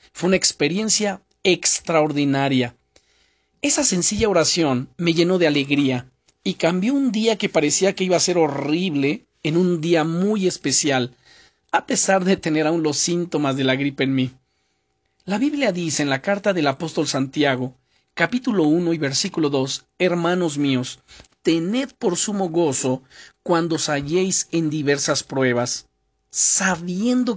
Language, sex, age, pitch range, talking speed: Spanish, male, 40-59, 140-190 Hz, 145 wpm